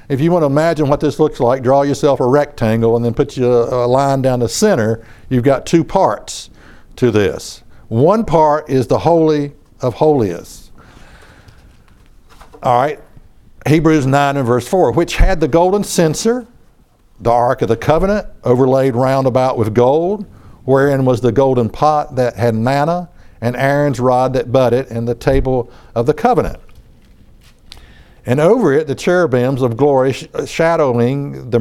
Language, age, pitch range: English, 60-79, 125-165 Hz